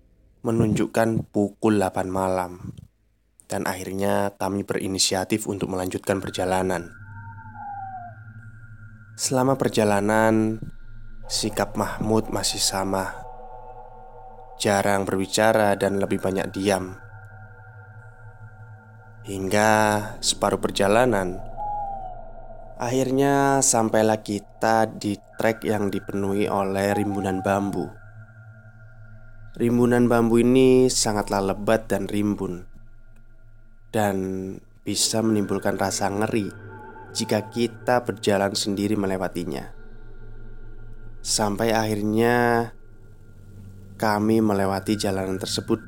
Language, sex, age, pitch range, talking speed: Indonesian, male, 20-39, 100-110 Hz, 75 wpm